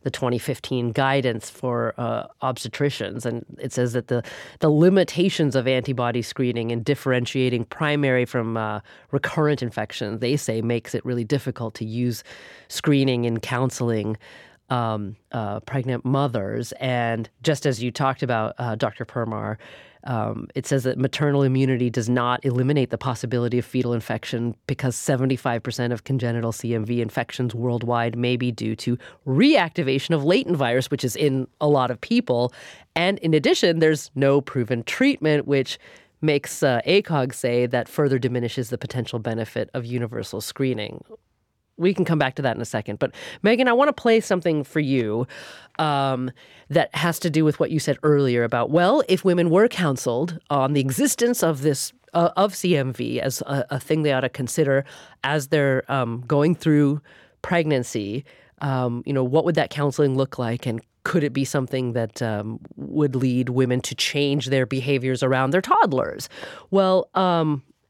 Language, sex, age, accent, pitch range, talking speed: English, female, 30-49, American, 120-150 Hz, 165 wpm